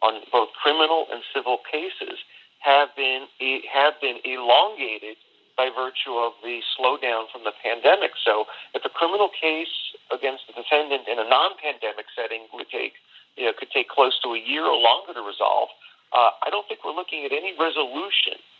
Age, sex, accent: 40-59, male, American